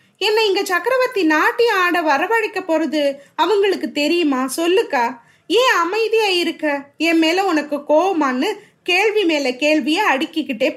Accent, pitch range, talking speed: native, 300-405 Hz, 115 wpm